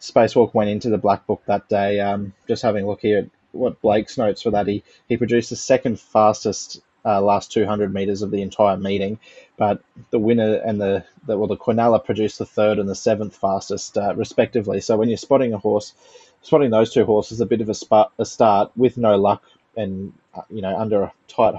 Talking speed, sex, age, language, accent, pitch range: 220 wpm, male, 20-39, English, Australian, 100-120 Hz